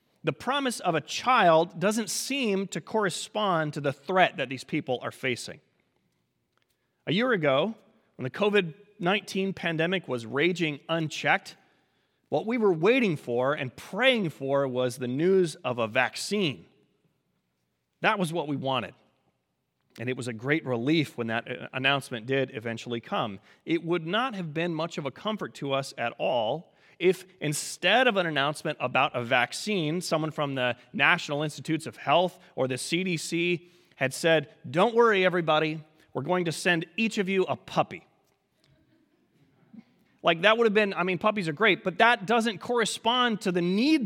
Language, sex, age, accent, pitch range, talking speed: English, male, 30-49, American, 135-200 Hz, 165 wpm